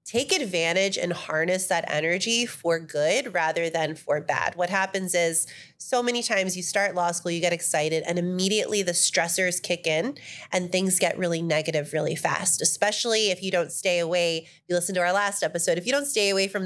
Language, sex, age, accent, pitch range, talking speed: English, female, 30-49, American, 165-195 Hz, 200 wpm